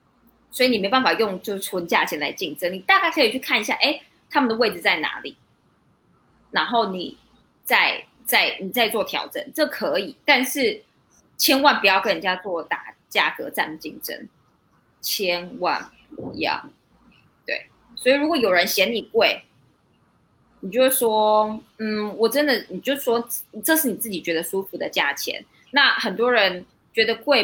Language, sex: Chinese, female